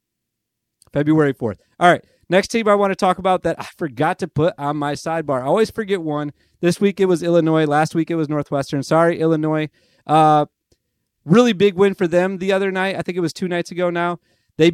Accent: American